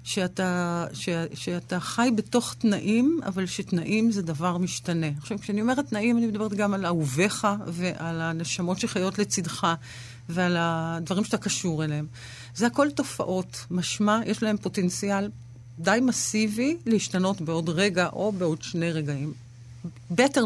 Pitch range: 165-230 Hz